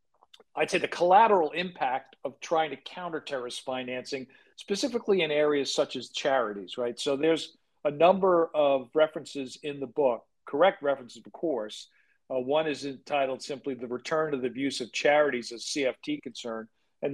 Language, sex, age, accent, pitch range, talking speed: English, male, 50-69, American, 130-160 Hz, 165 wpm